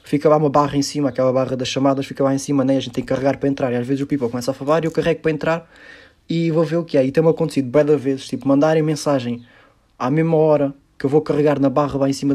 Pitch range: 125-145 Hz